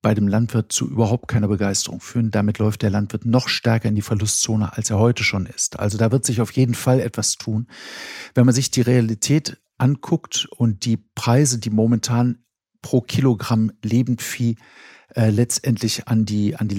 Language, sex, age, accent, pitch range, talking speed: German, male, 50-69, German, 105-125 Hz, 180 wpm